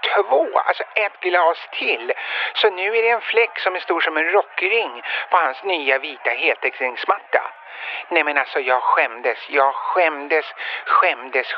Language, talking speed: Swedish, 155 wpm